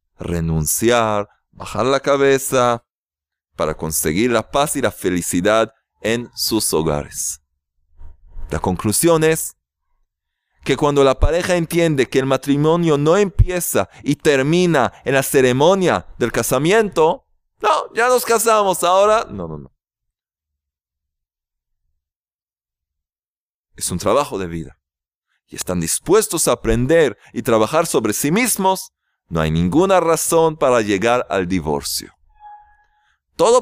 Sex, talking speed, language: male, 120 wpm, Spanish